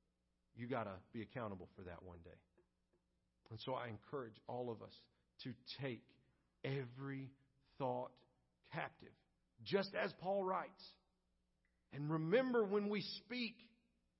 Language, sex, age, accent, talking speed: English, male, 50-69, American, 125 wpm